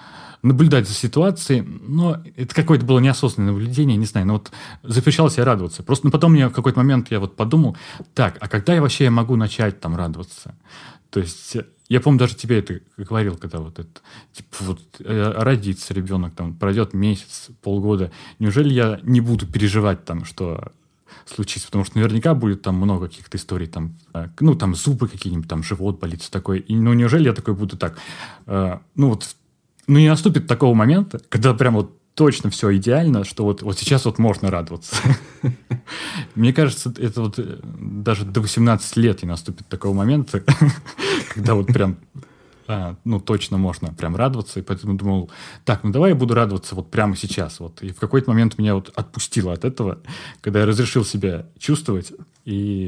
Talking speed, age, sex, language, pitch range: 170 wpm, 30-49, male, Russian, 95-125 Hz